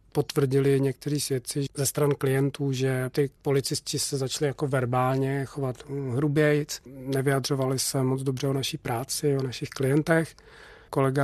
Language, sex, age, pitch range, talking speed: Czech, male, 40-59, 130-140 Hz, 140 wpm